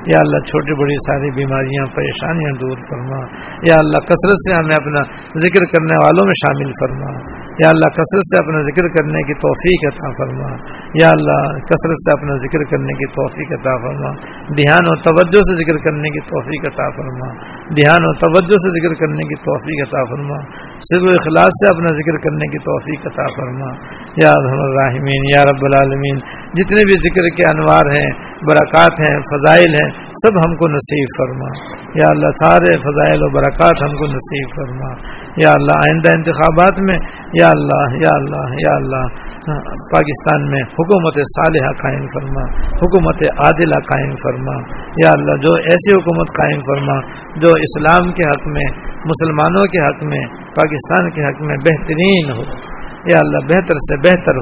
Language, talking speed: Urdu, 165 wpm